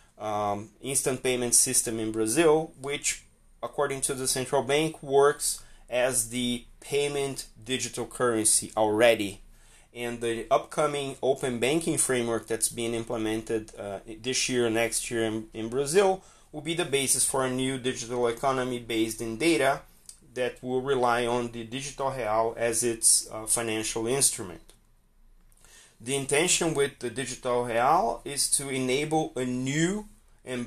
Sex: male